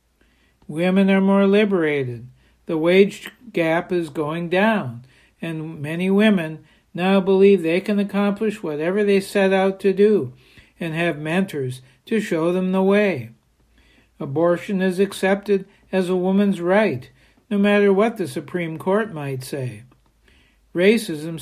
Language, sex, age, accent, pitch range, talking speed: English, male, 60-79, American, 155-195 Hz, 135 wpm